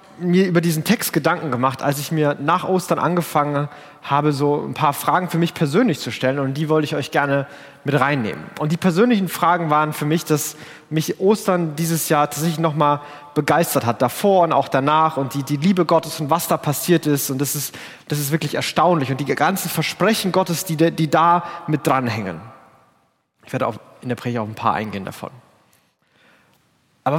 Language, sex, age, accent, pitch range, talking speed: German, male, 30-49, German, 145-190 Hz, 200 wpm